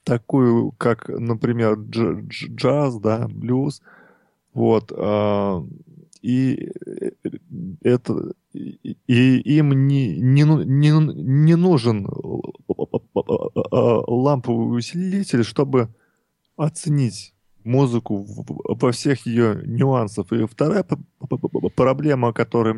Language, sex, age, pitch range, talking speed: Russian, male, 20-39, 115-140 Hz, 75 wpm